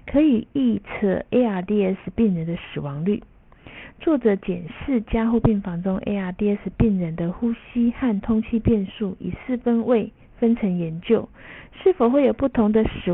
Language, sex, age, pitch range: Chinese, female, 50-69, 190-235 Hz